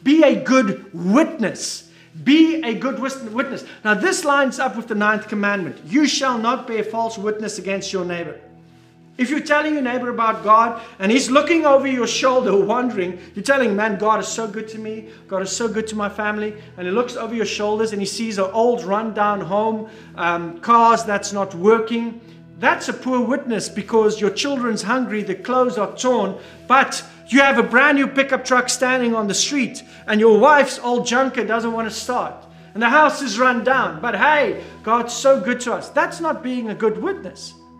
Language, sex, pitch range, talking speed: English, male, 210-265 Hz, 200 wpm